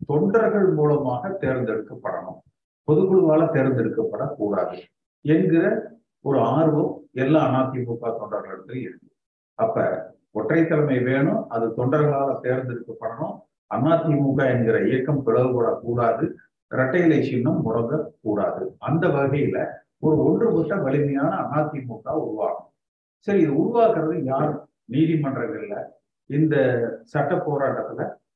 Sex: male